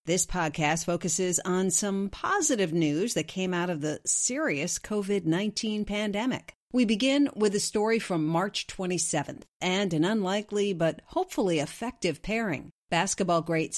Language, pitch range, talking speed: English, 165-220 Hz, 140 wpm